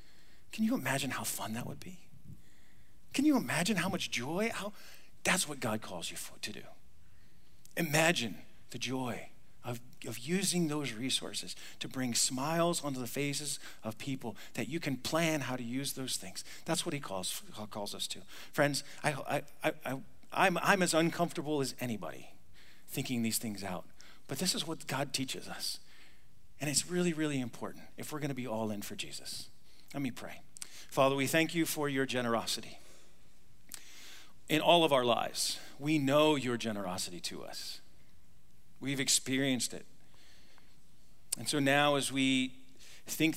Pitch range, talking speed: 120-155 Hz, 165 wpm